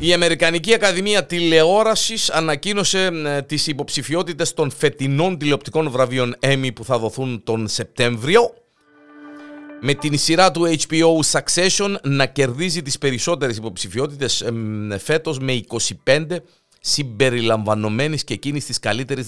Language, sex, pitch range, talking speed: Greek, male, 115-160 Hz, 115 wpm